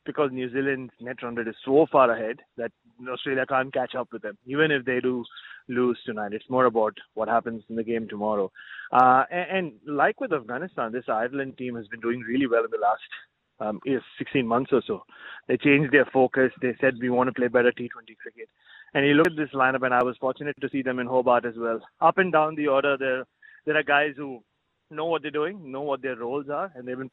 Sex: male